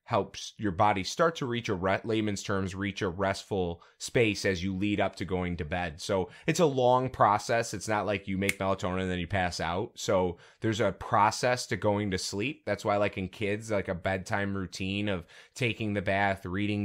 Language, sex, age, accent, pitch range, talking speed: English, male, 20-39, American, 90-110 Hz, 210 wpm